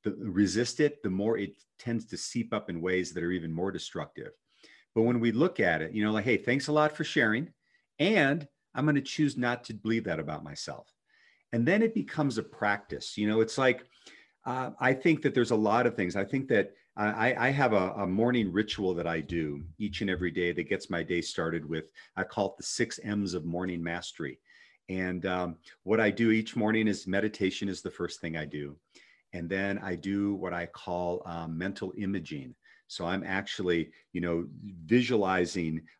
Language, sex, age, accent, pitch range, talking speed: English, male, 40-59, American, 90-115 Hz, 210 wpm